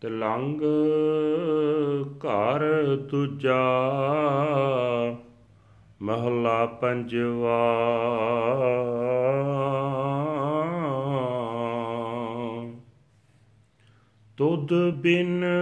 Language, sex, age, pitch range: Punjabi, male, 40-59, 125-170 Hz